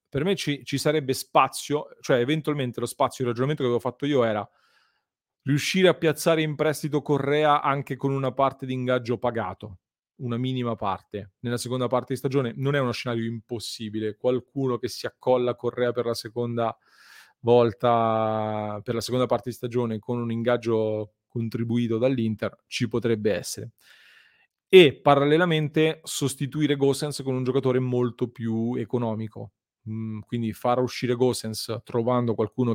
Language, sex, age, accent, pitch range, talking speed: Italian, male, 30-49, native, 110-130 Hz, 150 wpm